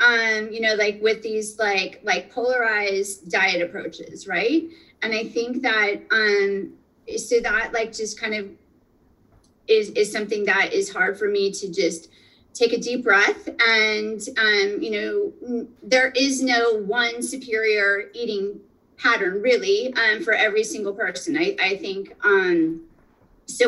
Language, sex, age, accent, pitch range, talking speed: English, female, 30-49, American, 215-335 Hz, 150 wpm